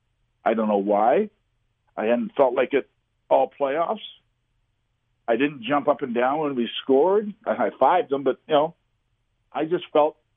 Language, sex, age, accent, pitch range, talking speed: English, male, 50-69, American, 110-140 Hz, 175 wpm